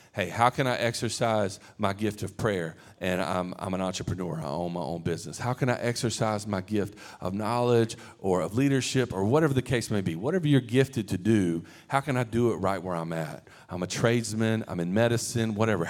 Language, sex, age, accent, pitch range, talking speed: English, male, 40-59, American, 100-125 Hz, 215 wpm